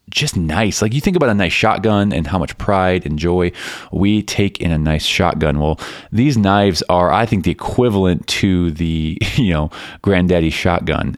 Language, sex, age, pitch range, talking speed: English, male, 20-39, 80-100 Hz, 190 wpm